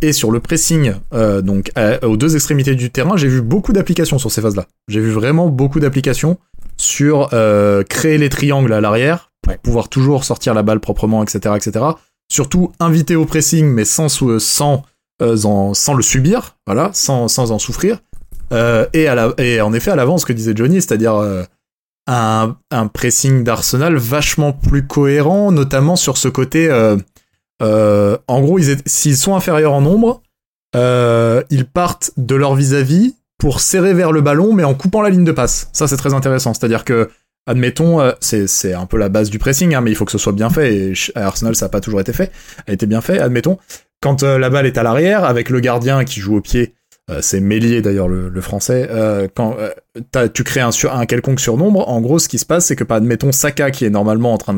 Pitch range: 110-150 Hz